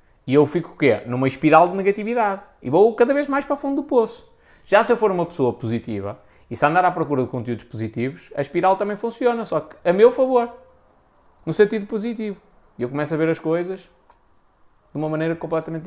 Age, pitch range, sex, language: 20-39, 125-180 Hz, male, Portuguese